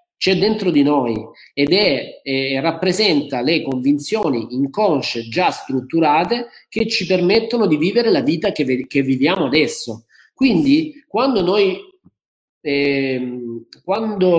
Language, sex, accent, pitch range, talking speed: Italian, male, native, 135-210 Hz, 120 wpm